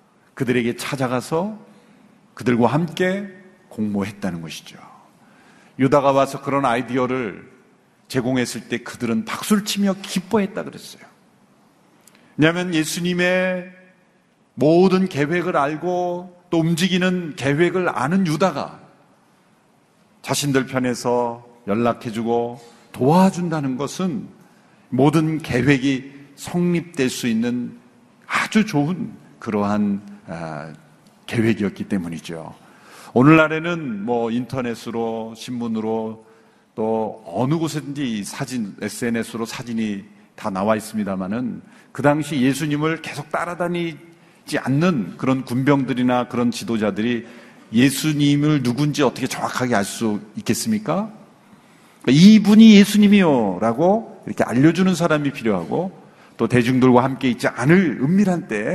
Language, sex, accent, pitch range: Korean, male, native, 120-185 Hz